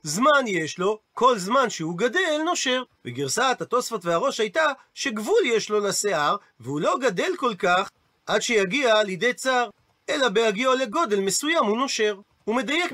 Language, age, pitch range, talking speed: Hebrew, 40-59, 195-275 Hz, 155 wpm